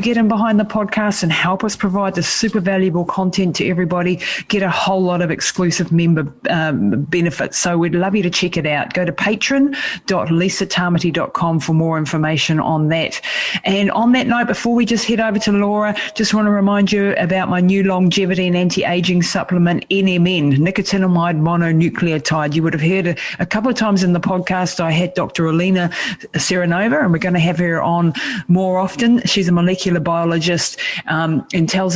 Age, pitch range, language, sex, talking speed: 40-59, 160-190 Hz, English, female, 185 wpm